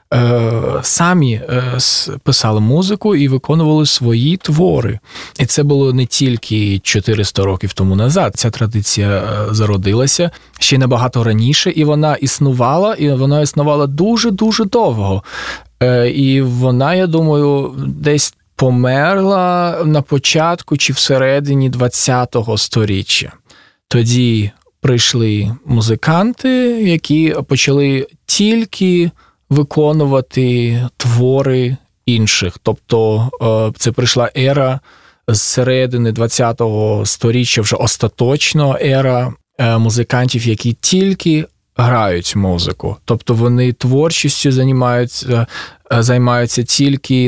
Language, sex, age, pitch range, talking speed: Russian, male, 20-39, 115-145 Hz, 95 wpm